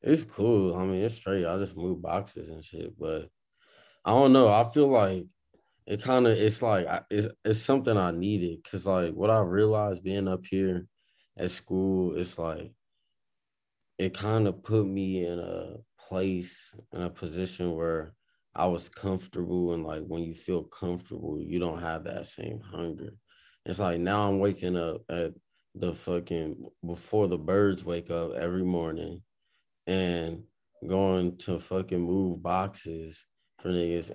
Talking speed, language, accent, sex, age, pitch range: 160 wpm, English, American, male, 20-39, 85-100 Hz